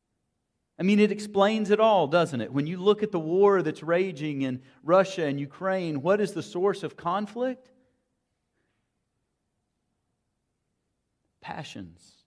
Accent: American